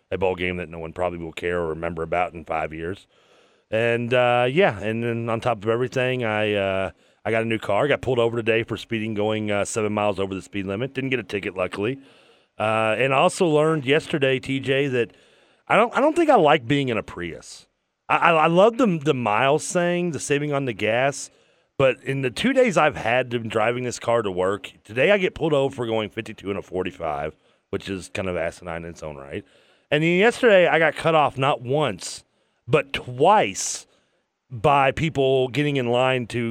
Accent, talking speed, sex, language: American, 220 wpm, male, English